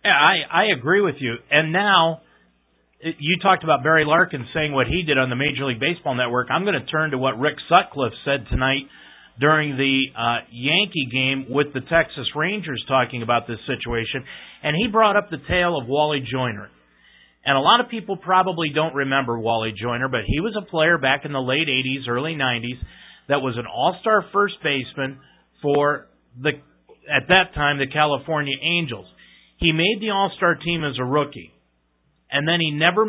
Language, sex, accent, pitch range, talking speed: English, male, American, 125-165 Hz, 185 wpm